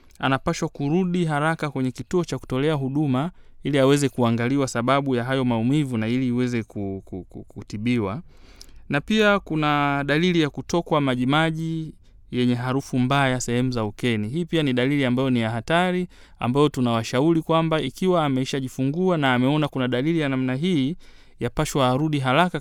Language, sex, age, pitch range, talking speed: Swahili, male, 30-49, 120-155 Hz, 145 wpm